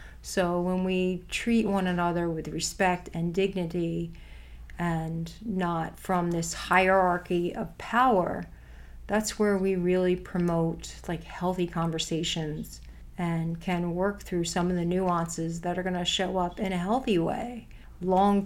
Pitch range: 175-195 Hz